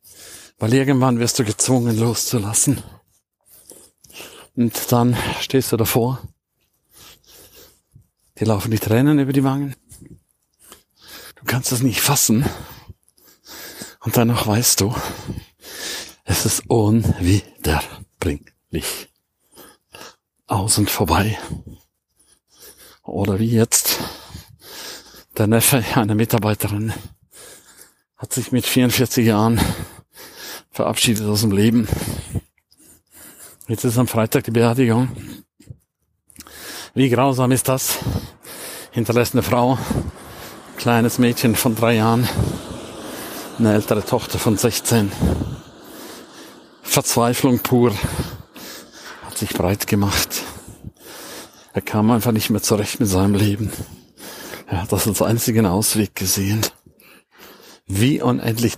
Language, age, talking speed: German, 50-69, 100 wpm